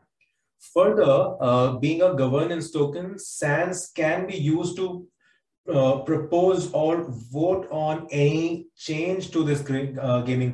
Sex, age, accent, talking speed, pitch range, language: male, 20-39, Indian, 125 wpm, 135-170 Hz, English